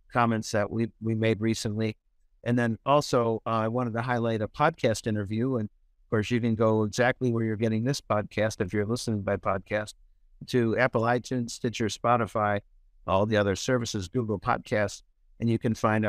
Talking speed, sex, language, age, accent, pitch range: 185 wpm, male, English, 50-69, American, 105-125 Hz